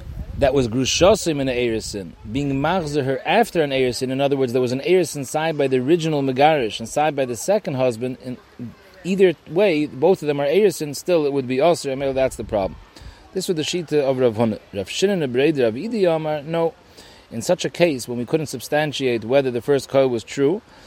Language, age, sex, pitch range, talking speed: English, 30-49, male, 125-160 Hz, 210 wpm